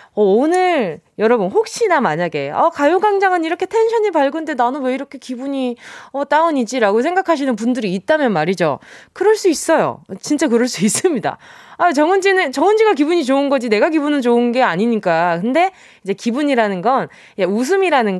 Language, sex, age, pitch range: Korean, female, 20-39, 210-320 Hz